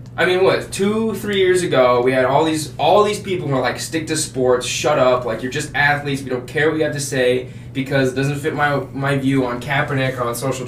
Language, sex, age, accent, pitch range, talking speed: English, male, 20-39, American, 125-165 Hz, 260 wpm